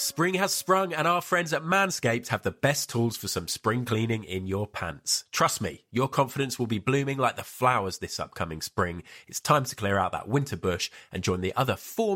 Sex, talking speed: male, 220 wpm